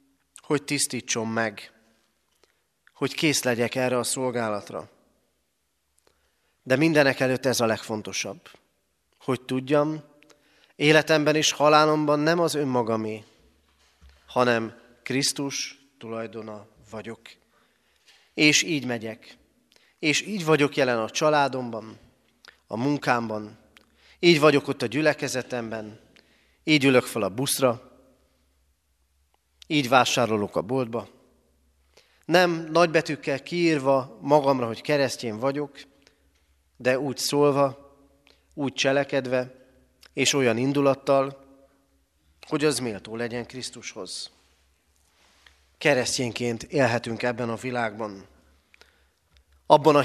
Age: 30-49